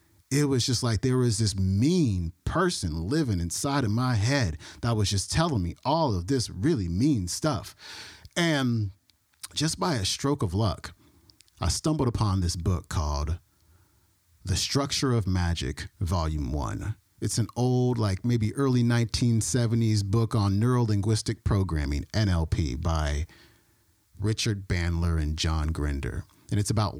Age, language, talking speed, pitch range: 40-59, English, 145 wpm, 90-120 Hz